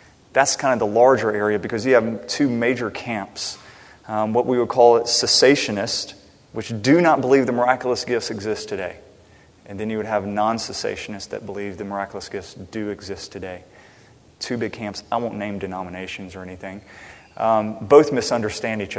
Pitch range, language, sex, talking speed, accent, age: 105-135 Hz, English, male, 170 wpm, American, 30-49